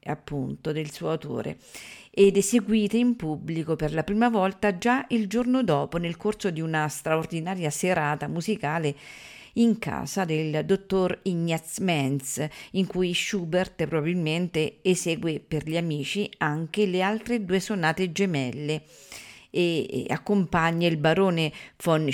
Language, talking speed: Italian, 130 wpm